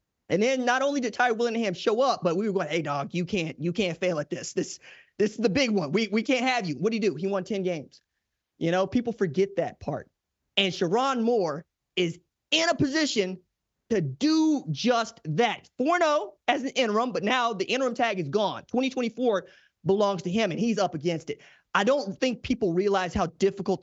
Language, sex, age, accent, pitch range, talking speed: English, male, 30-49, American, 185-245 Hz, 215 wpm